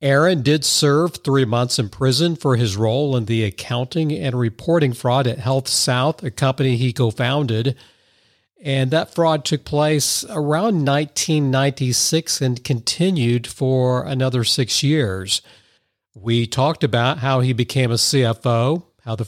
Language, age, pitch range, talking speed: English, 50-69, 115-145 Hz, 140 wpm